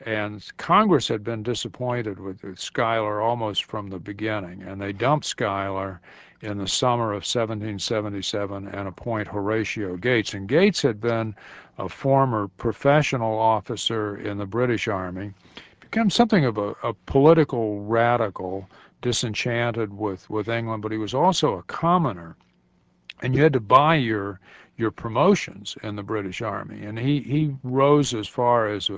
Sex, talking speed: male, 150 wpm